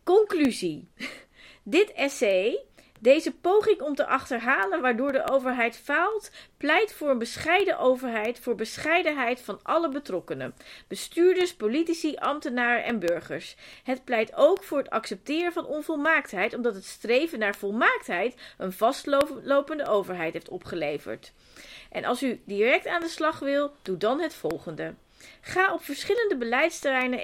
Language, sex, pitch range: Dutch, female, 220-310 Hz